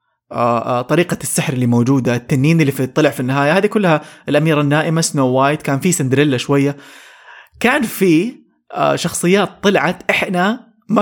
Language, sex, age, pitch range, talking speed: English, male, 20-39, 135-180 Hz, 140 wpm